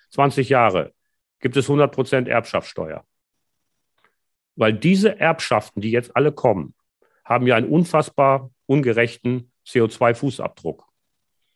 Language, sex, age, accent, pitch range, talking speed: German, male, 40-59, German, 115-155 Hz, 100 wpm